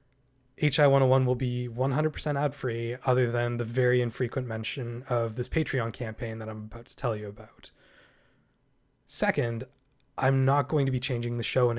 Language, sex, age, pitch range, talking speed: English, male, 20-39, 115-135 Hz, 165 wpm